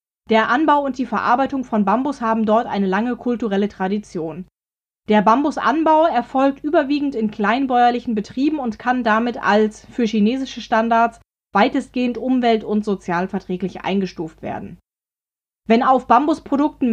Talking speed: 130 wpm